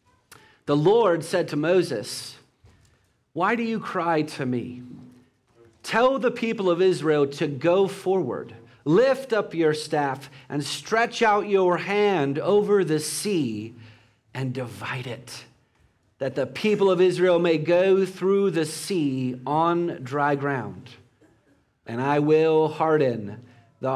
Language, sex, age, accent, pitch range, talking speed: English, male, 40-59, American, 125-170 Hz, 130 wpm